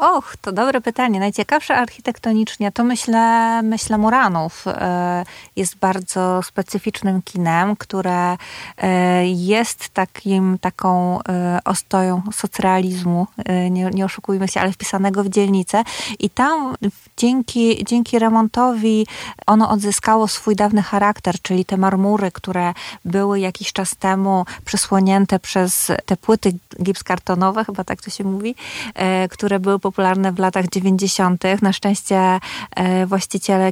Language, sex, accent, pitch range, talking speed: Polish, female, native, 185-210 Hz, 115 wpm